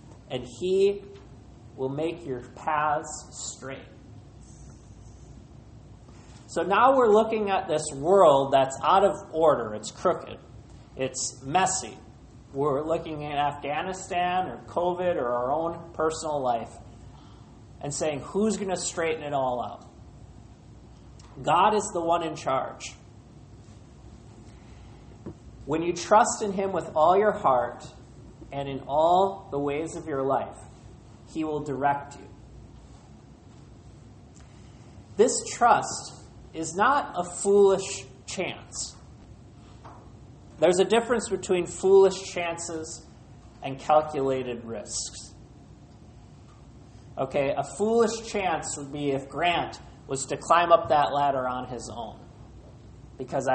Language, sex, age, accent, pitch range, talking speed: English, male, 40-59, American, 125-175 Hz, 115 wpm